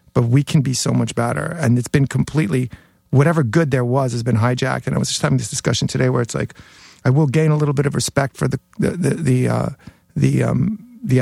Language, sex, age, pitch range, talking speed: English, male, 50-69, 125-150 Hz, 245 wpm